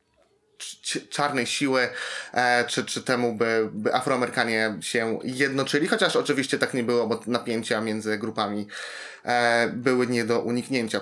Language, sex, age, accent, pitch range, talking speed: Polish, male, 20-39, native, 120-140 Hz, 125 wpm